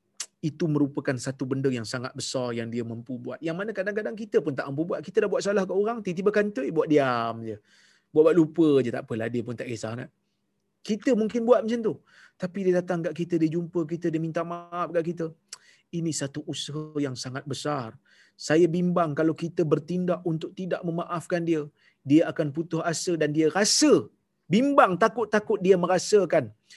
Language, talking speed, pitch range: Malayalam, 190 wpm, 145-185 Hz